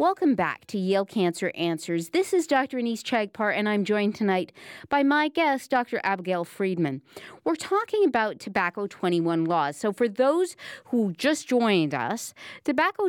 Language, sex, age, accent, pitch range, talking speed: English, female, 40-59, American, 195-280 Hz, 160 wpm